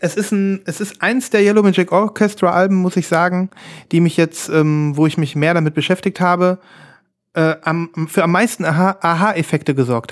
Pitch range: 155-190 Hz